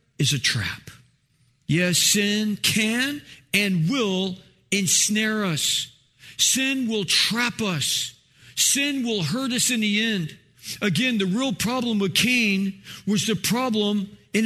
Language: English